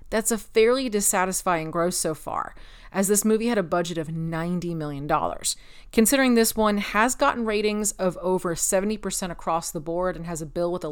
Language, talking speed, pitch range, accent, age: English, 185 wpm, 175-225 Hz, American, 30-49